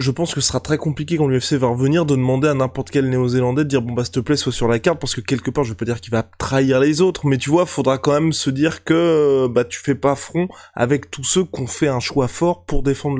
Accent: French